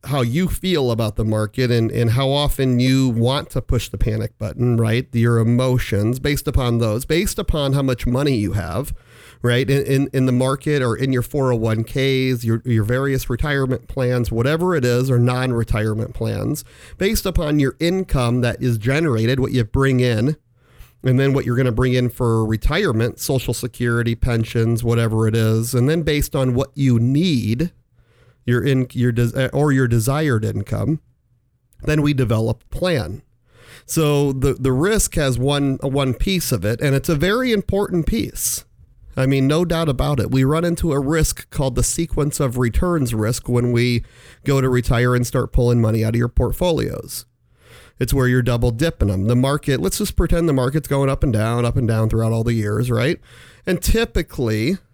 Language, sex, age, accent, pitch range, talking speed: English, male, 40-59, American, 120-140 Hz, 185 wpm